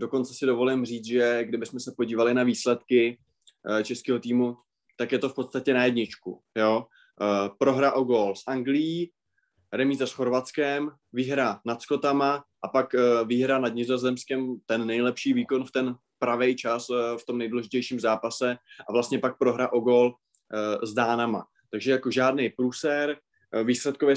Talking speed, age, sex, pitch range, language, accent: 145 wpm, 20-39, male, 120-130 Hz, Czech, native